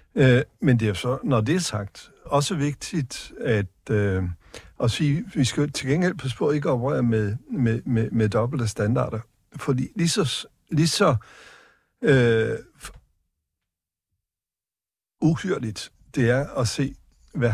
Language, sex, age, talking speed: Danish, male, 60-79, 145 wpm